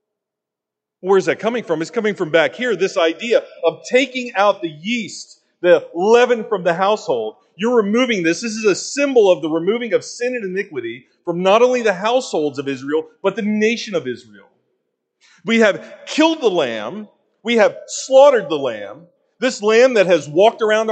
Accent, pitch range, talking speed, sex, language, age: American, 180-250 Hz, 185 wpm, male, English, 40-59